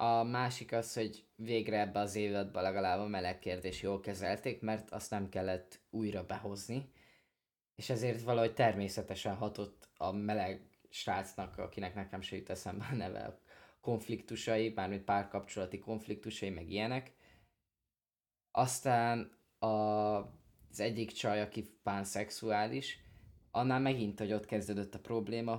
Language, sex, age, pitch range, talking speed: Hungarian, male, 20-39, 105-130 Hz, 125 wpm